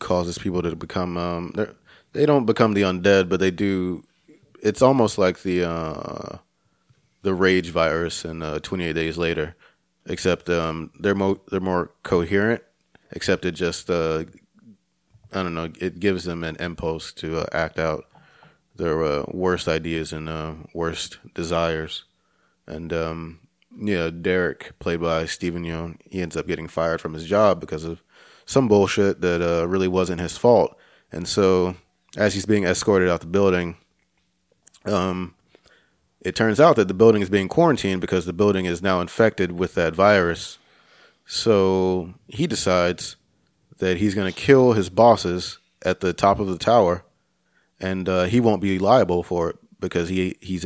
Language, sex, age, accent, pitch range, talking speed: English, male, 30-49, American, 85-95 Hz, 160 wpm